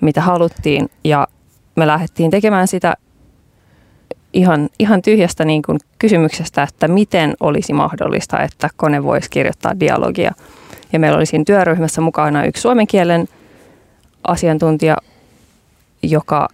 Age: 20-39